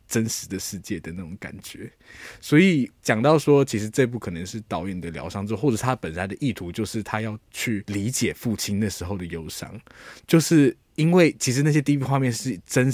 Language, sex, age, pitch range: Chinese, male, 20-39, 100-140 Hz